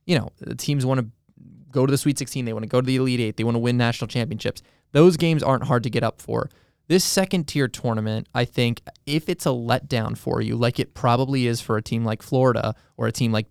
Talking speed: 255 wpm